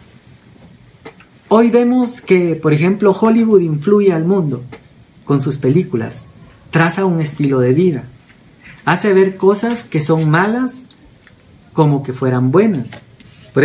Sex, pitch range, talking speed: male, 145-190 Hz, 125 wpm